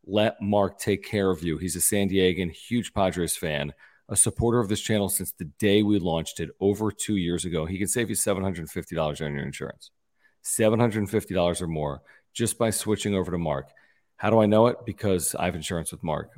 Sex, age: male, 40-59